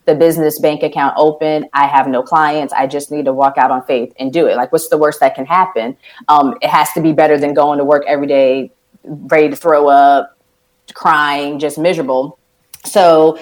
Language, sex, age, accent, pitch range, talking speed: English, female, 30-49, American, 145-170 Hz, 210 wpm